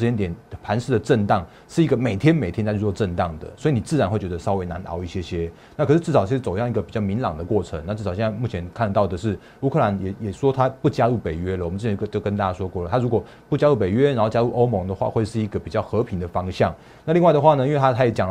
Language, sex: Chinese, male